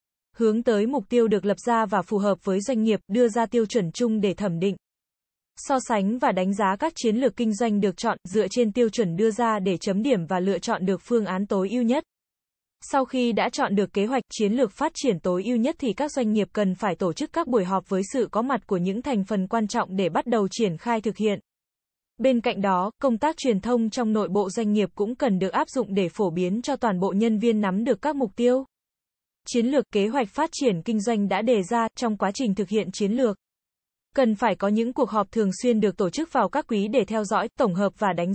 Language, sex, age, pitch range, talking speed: Vietnamese, female, 20-39, 200-245 Hz, 255 wpm